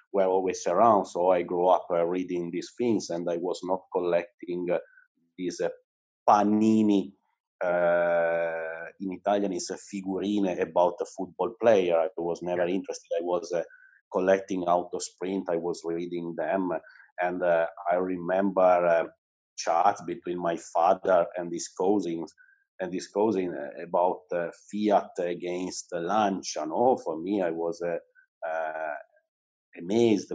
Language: English